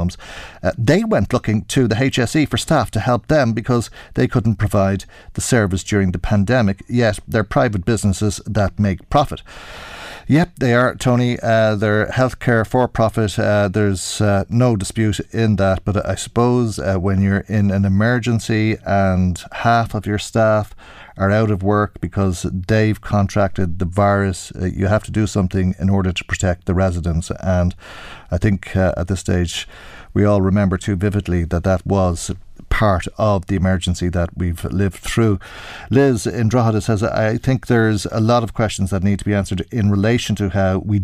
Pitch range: 90-110 Hz